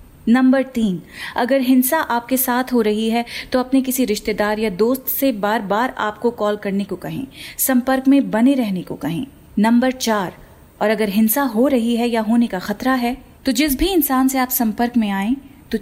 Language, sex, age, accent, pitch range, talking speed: Hindi, female, 30-49, native, 215-255 Hz, 195 wpm